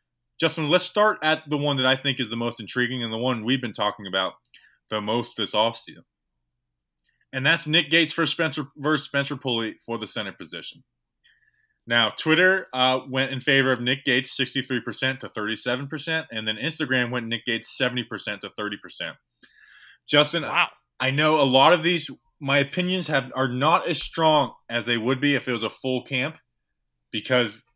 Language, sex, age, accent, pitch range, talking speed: English, male, 20-39, American, 115-150 Hz, 180 wpm